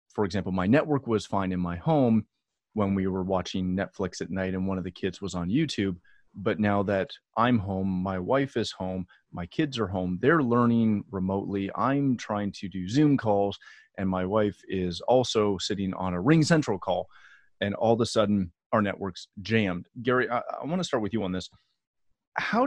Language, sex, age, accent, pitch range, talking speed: English, male, 30-49, American, 100-130 Hz, 200 wpm